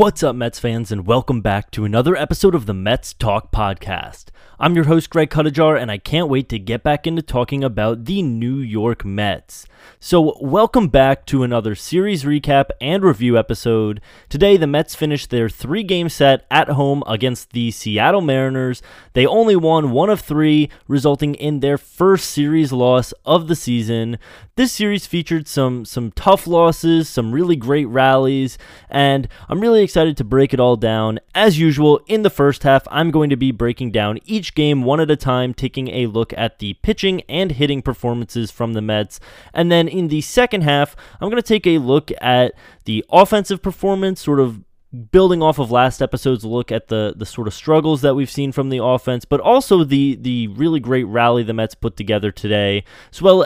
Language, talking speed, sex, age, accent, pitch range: English, 195 wpm, male, 20-39, American, 120-165 Hz